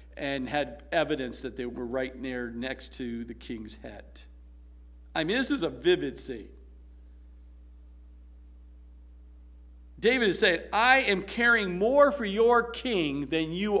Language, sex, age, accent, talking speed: English, male, 50-69, American, 140 wpm